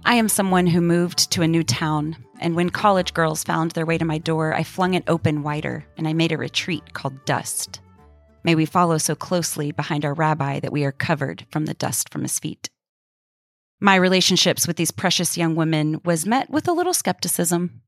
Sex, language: female, English